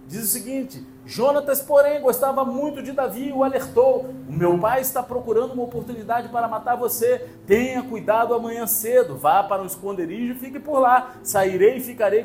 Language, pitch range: Portuguese, 225-280 Hz